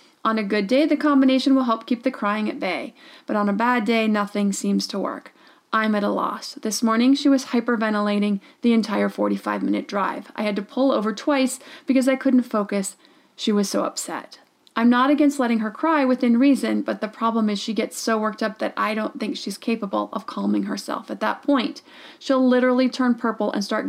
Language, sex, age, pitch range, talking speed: English, female, 30-49, 210-270 Hz, 210 wpm